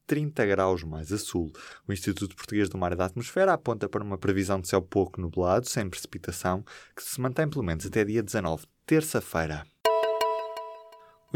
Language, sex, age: Portuguese, male, 20-39